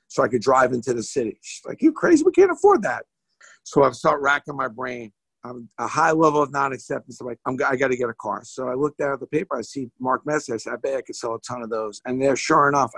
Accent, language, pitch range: American, English, 125-150 Hz